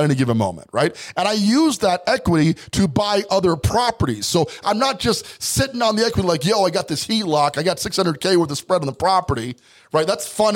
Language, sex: English, male